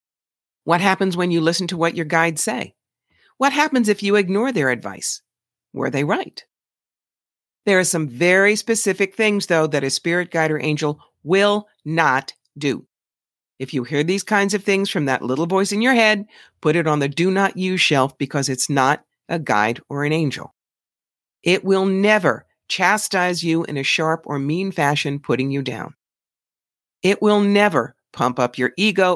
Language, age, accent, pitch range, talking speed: English, 50-69, American, 145-195 Hz, 175 wpm